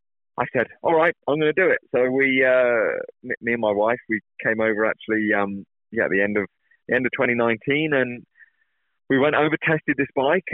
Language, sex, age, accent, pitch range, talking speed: English, male, 20-39, British, 110-140 Hz, 210 wpm